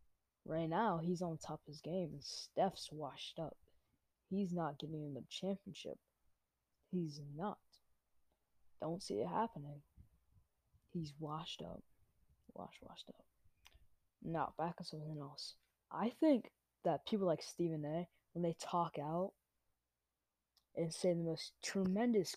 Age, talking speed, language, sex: 20-39, 135 wpm, English, female